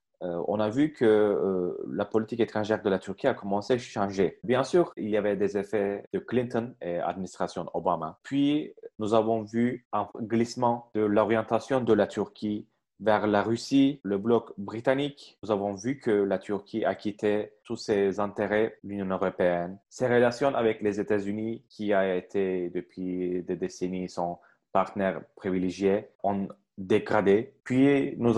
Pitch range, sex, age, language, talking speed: 100-120 Hz, male, 30-49, Turkish, 160 wpm